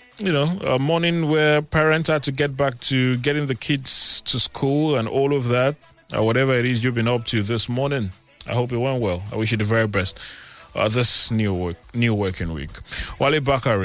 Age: 30-49